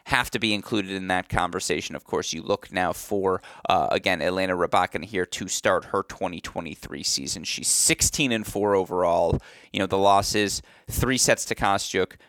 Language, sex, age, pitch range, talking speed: English, male, 20-39, 100-120 Hz, 170 wpm